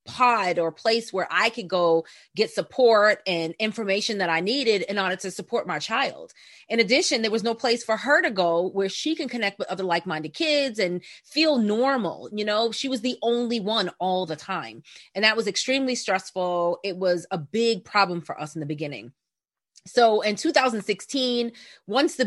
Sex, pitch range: female, 185-240 Hz